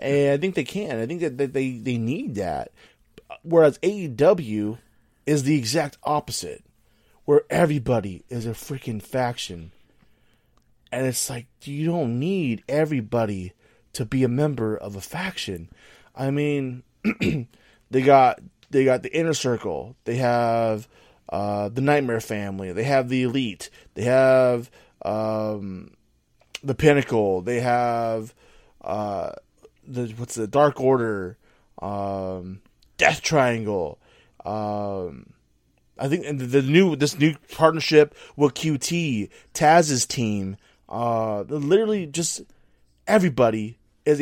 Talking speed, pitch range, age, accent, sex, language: 125 wpm, 110-145 Hz, 20-39, American, male, English